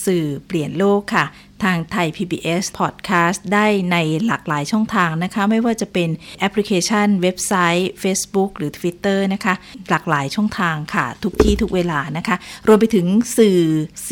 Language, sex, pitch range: Thai, female, 165-205 Hz